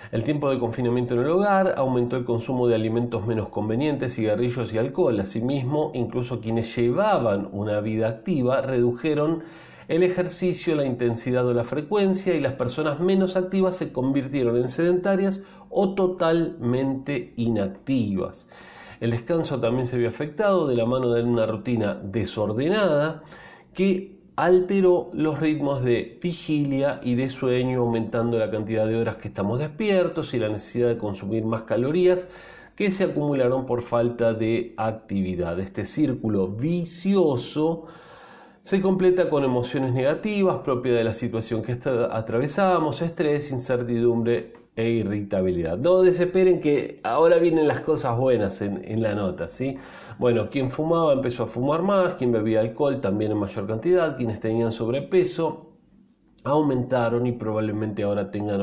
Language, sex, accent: Spanish, male, Argentinian